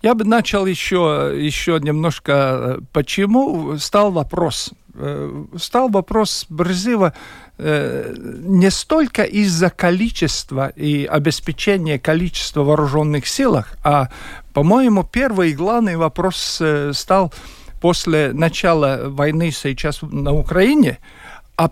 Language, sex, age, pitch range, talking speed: Russian, male, 50-69, 145-200 Hz, 95 wpm